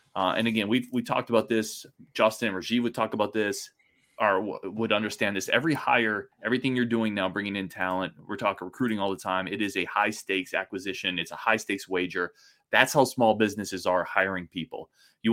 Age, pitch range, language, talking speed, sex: 20-39, 95-115 Hz, English, 210 wpm, male